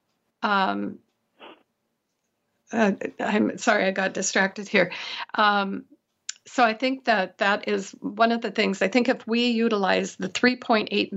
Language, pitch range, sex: English, 195-225 Hz, female